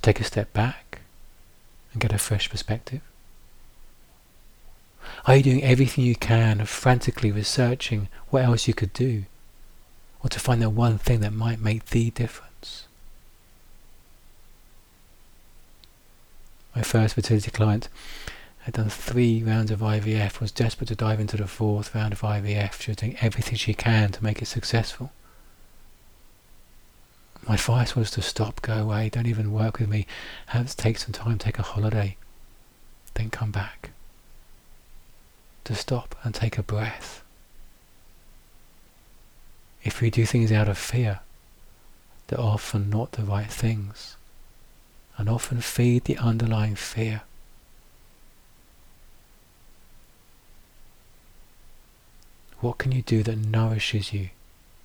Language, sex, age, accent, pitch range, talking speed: English, male, 40-59, British, 105-115 Hz, 130 wpm